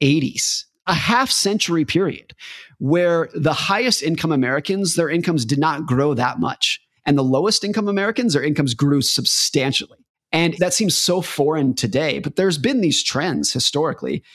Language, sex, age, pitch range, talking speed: English, male, 30-49, 135-170 Hz, 145 wpm